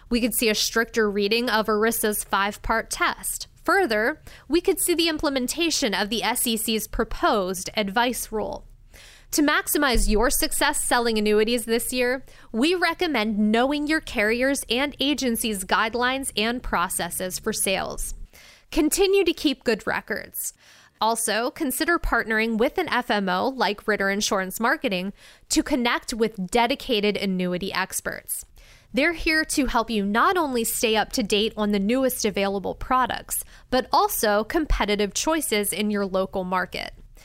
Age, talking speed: 20-39, 140 wpm